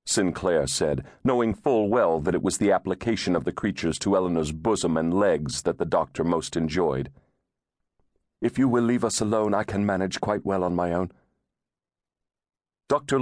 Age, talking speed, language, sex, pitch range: 40-59, 170 wpm, English, male, 85-115 Hz